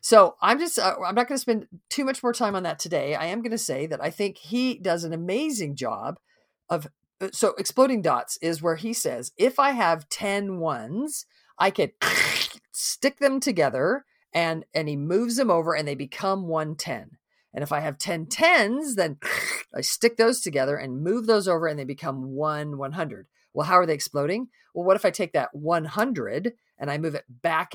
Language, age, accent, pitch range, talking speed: English, 40-59, American, 145-225 Hz, 205 wpm